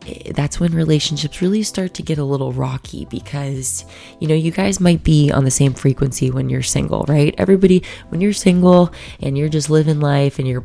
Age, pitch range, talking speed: 20-39, 135-155 Hz, 205 wpm